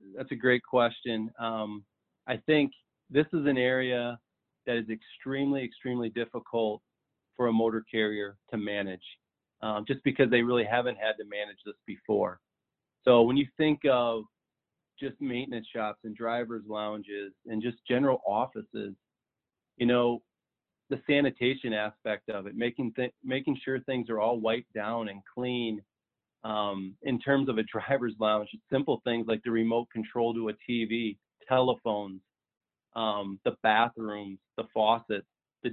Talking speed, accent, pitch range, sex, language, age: 150 wpm, American, 110-125 Hz, male, English, 40-59